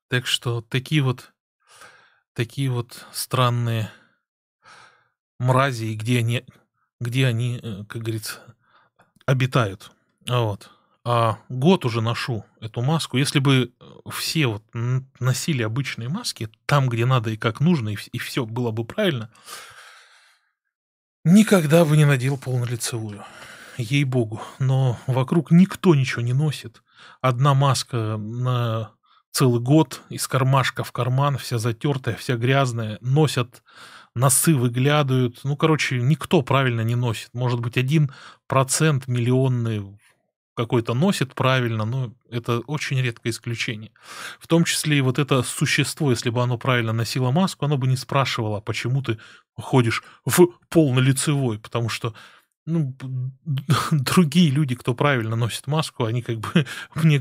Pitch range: 120-145 Hz